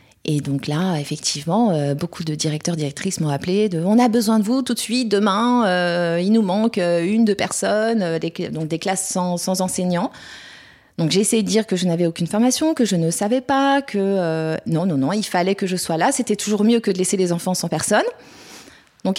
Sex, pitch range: female, 165-215 Hz